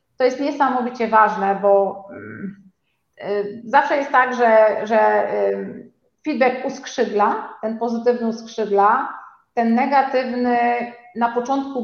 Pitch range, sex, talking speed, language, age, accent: 200-250 Hz, female, 95 wpm, Polish, 30-49, native